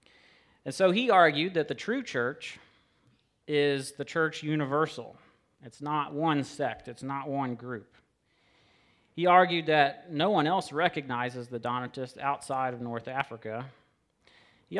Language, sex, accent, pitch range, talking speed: English, male, American, 120-150 Hz, 140 wpm